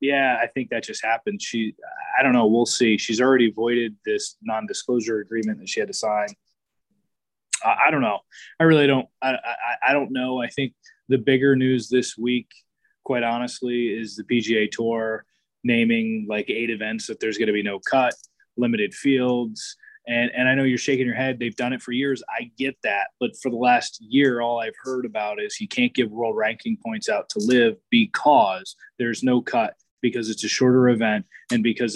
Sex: male